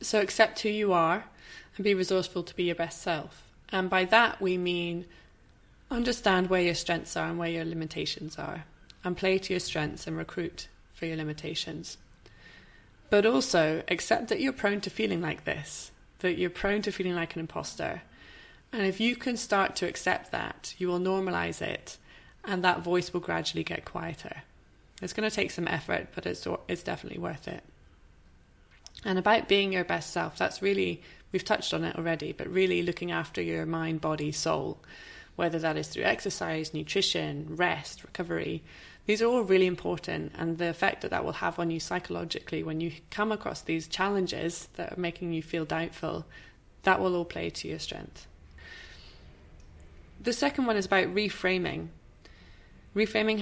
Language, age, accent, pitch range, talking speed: English, 20-39, British, 160-195 Hz, 175 wpm